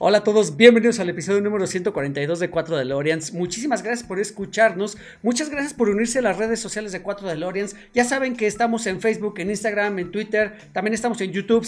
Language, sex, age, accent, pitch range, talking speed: Spanish, male, 40-59, Mexican, 180-225 Hz, 205 wpm